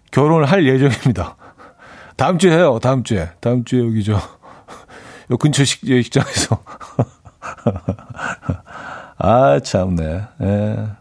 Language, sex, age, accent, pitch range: Korean, male, 40-59, native, 105-140 Hz